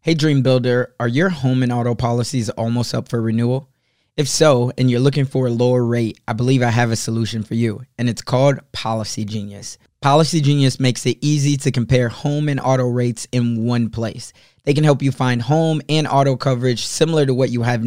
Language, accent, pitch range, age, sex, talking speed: English, American, 120-145 Hz, 20-39, male, 210 wpm